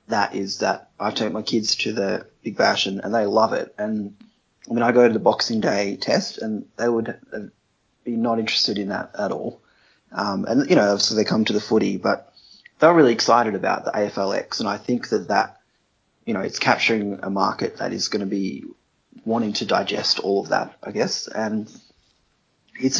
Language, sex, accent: English, male, Australian